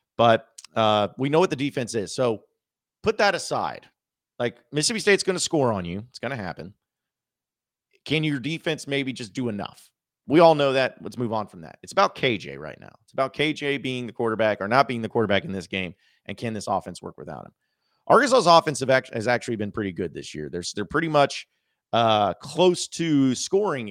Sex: male